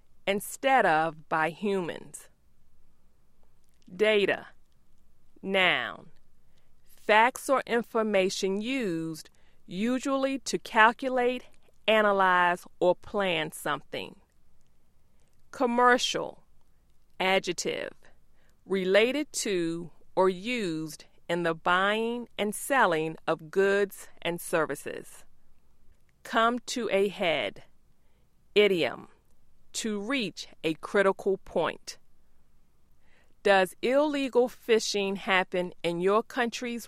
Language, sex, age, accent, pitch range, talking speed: English, female, 40-59, American, 175-235 Hz, 80 wpm